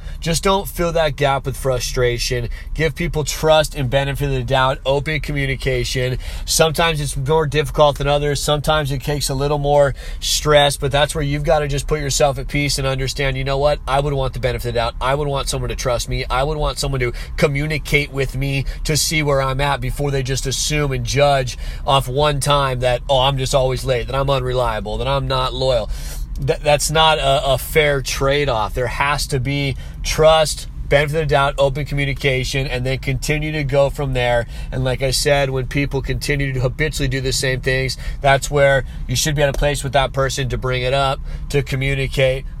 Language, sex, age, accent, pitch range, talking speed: English, male, 30-49, American, 130-145 Hz, 210 wpm